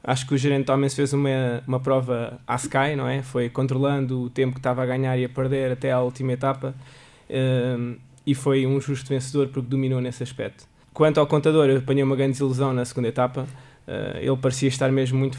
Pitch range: 125-140 Hz